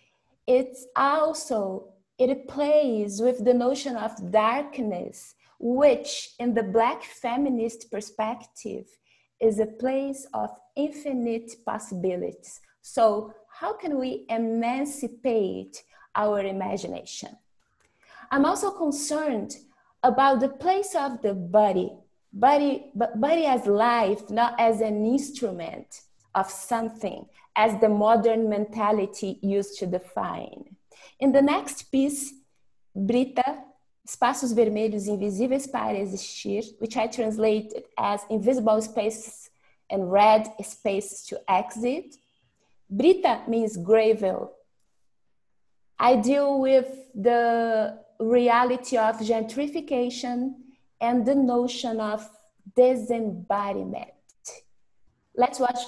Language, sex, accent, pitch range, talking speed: English, female, Brazilian, 215-265 Hz, 100 wpm